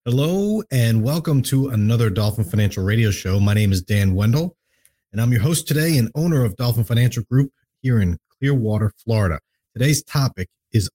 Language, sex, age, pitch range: English, male, 40-59, 100-130 Hz